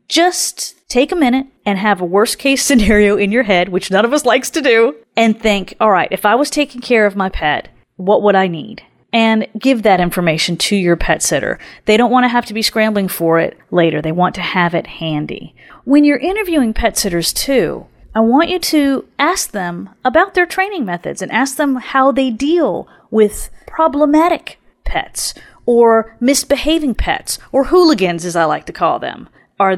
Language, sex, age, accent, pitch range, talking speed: English, female, 30-49, American, 190-270 Hz, 195 wpm